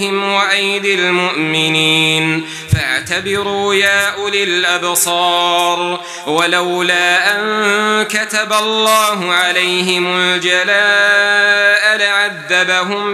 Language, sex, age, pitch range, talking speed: Arabic, male, 30-49, 175-210 Hz, 60 wpm